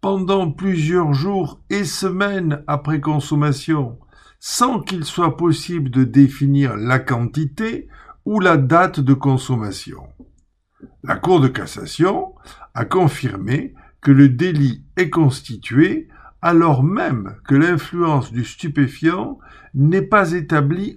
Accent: French